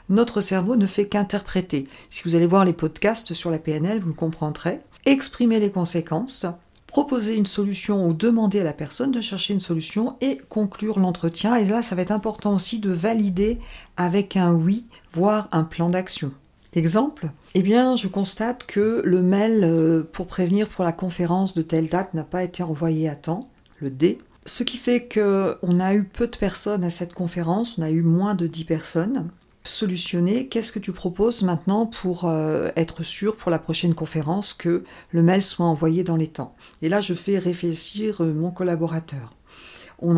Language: French